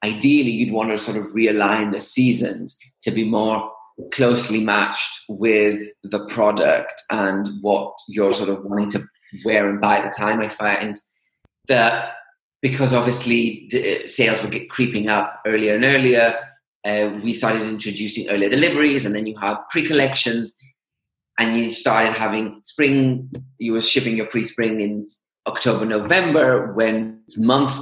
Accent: British